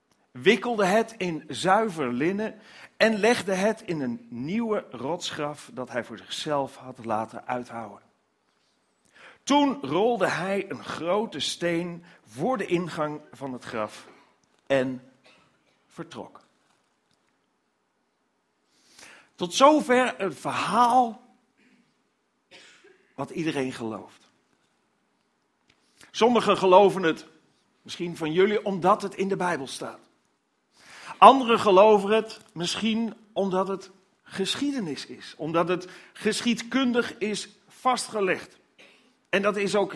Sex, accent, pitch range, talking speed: male, Dutch, 150-215 Hz, 105 wpm